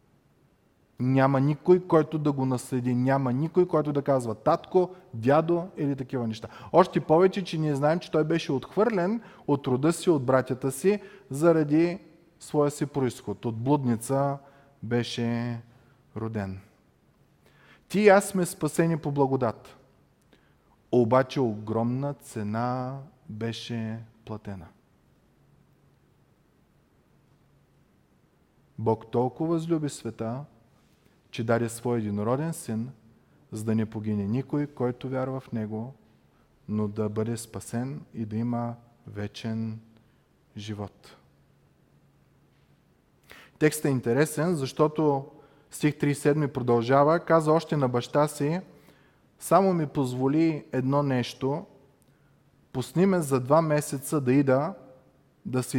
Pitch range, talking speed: 120-155 Hz, 110 wpm